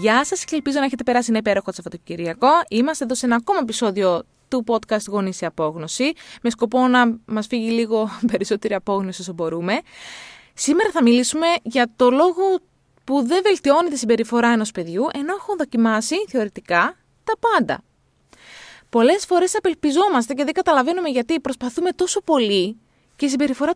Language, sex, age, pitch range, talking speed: Greek, female, 20-39, 215-315 Hz, 155 wpm